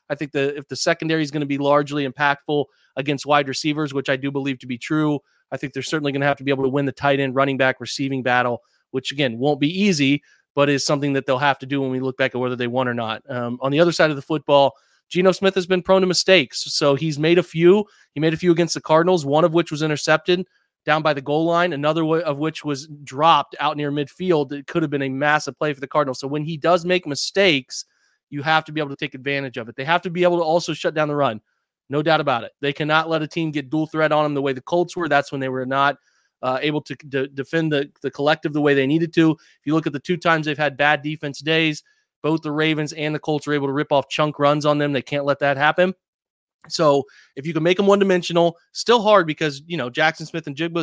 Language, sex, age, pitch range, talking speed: English, male, 30-49, 140-160 Hz, 275 wpm